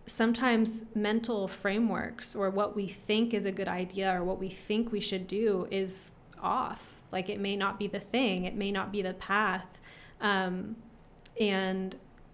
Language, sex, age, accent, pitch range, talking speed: English, female, 20-39, American, 190-220 Hz, 170 wpm